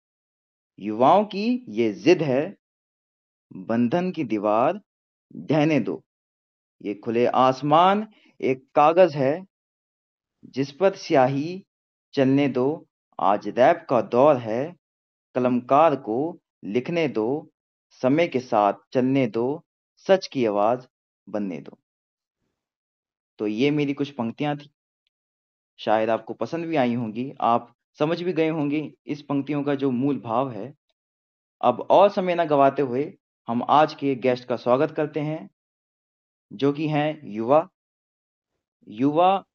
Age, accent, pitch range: 30-49, native, 120-160 Hz